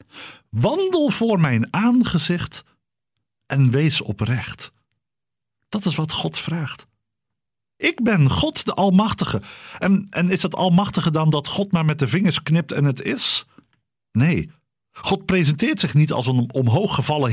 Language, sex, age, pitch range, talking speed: Dutch, male, 50-69, 130-195 Hz, 140 wpm